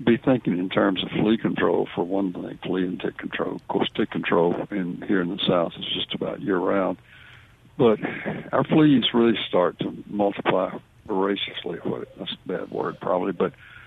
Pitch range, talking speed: 100-115 Hz, 175 wpm